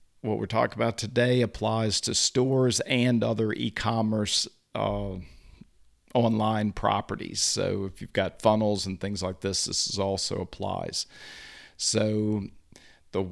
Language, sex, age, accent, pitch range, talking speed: English, male, 50-69, American, 100-115 Hz, 120 wpm